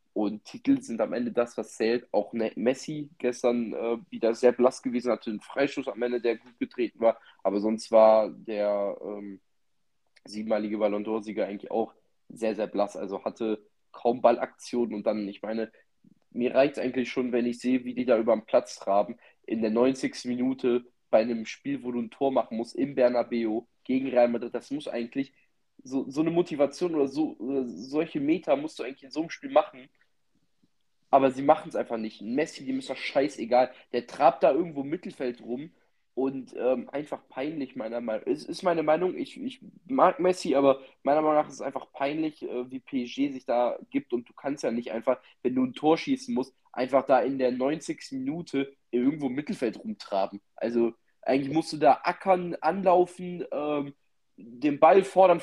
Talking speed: 190 wpm